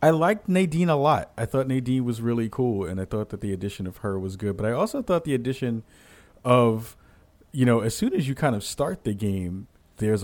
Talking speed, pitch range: 235 wpm, 95-120 Hz